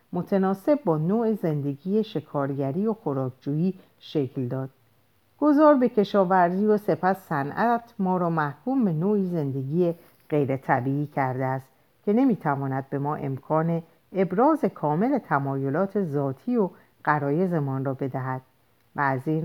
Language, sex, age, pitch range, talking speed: Persian, female, 50-69, 140-195 Hz, 125 wpm